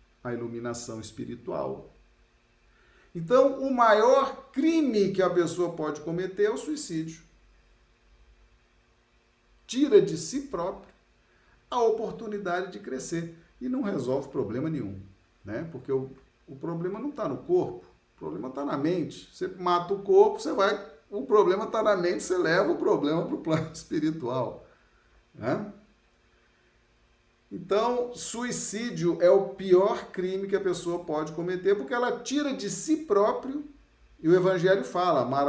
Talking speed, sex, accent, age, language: 140 wpm, male, Brazilian, 50-69, Portuguese